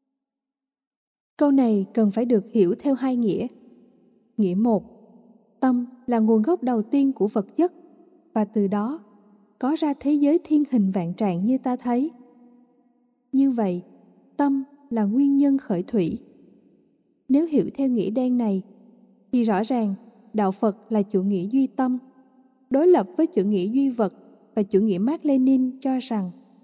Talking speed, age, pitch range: 160 wpm, 20-39, 210-265 Hz